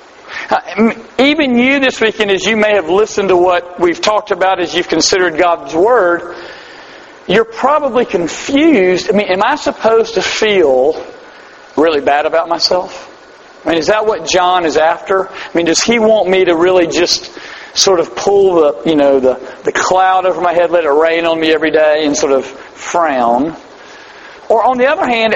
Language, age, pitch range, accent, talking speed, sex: English, 40-59, 170-225 Hz, American, 180 wpm, male